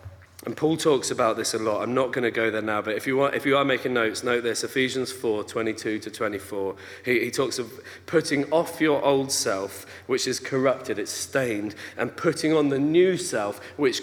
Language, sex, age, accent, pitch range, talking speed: English, male, 40-59, British, 100-165 Hz, 210 wpm